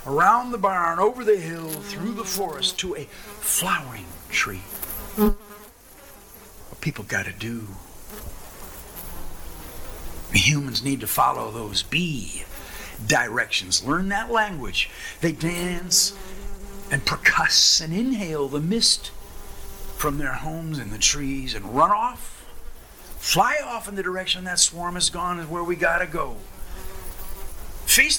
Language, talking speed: English, 130 wpm